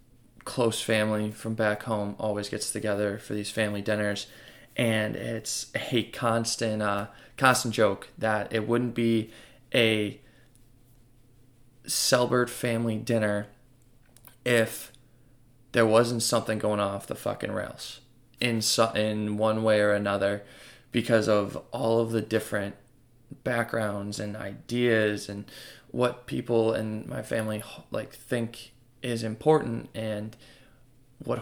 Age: 20-39